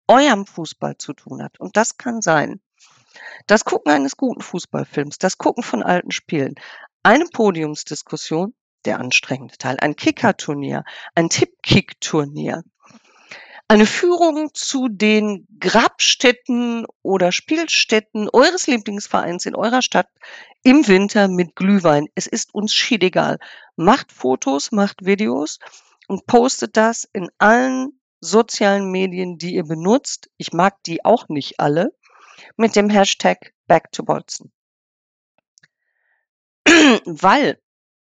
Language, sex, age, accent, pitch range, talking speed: German, female, 50-69, German, 175-245 Hz, 120 wpm